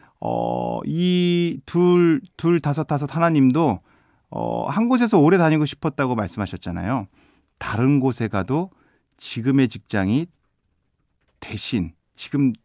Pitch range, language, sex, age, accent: 125-195 Hz, Korean, male, 40-59, native